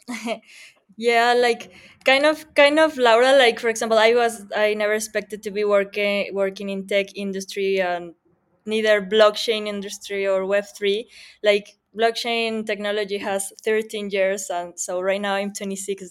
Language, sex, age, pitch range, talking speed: English, female, 20-39, 195-220 Hz, 150 wpm